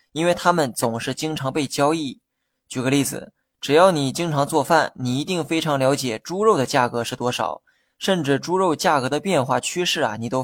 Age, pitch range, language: 20-39, 125-155 Hz, Chinese